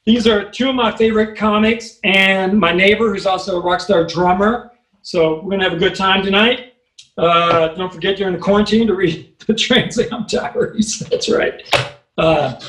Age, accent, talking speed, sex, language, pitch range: 40-59, American, 190 wpm, male, English, 180-225 Hz